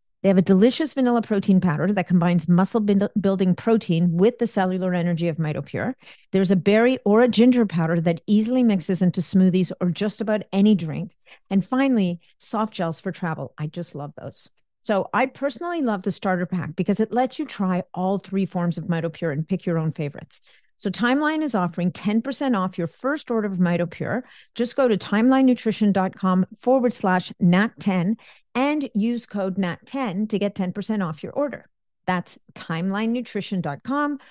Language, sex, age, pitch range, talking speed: English, female, 50-69, 175-225 Hz, 170 wpm